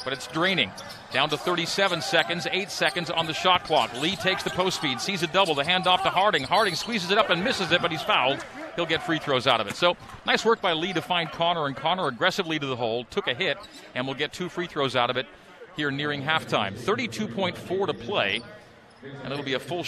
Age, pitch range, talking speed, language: 40-59, 130-170 Hz, 240 wpm, English